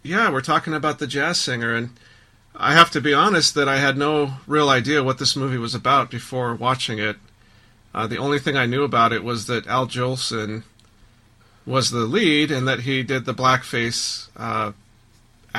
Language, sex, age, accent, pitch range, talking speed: English, male, 40-59, American, 115-140 Hz, 190 wpm